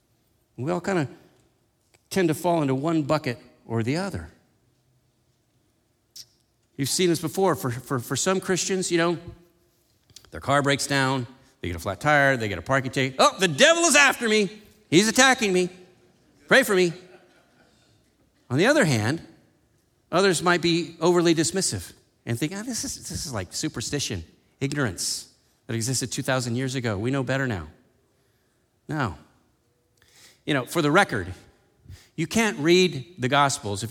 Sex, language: male, English